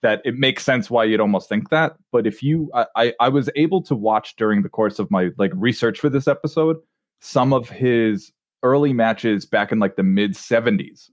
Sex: male